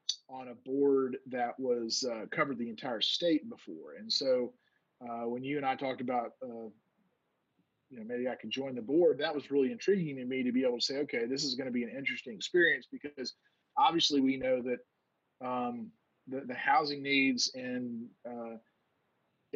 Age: 40-59